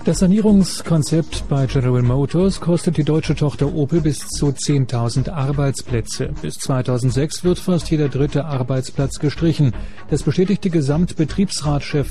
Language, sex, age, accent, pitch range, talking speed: German, male, 30-49, German, 125-160 Hz, 125 wpm